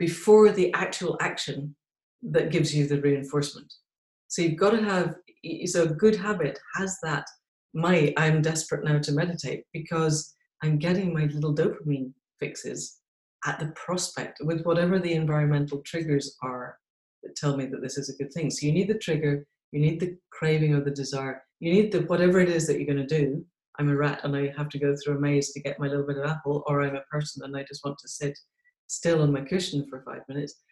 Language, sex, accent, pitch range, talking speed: English, female, British, 145-175 Hz, 215 wpm